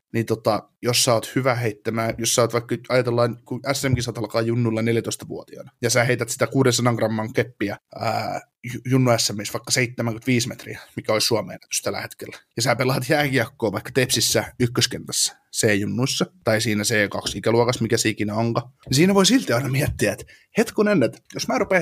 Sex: male